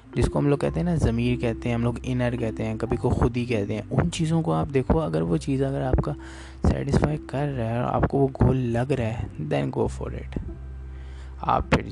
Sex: male